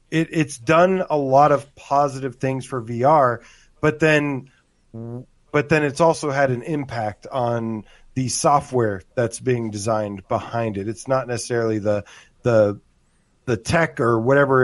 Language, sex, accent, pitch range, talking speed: English, male, American, 120-150 Hz, 150 wpm